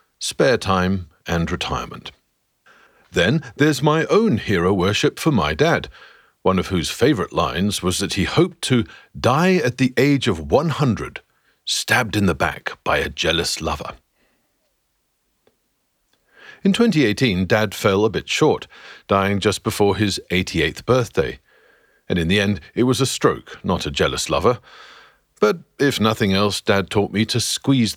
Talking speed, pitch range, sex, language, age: 150 wpm, 95-140 Hz, male, English, 50-69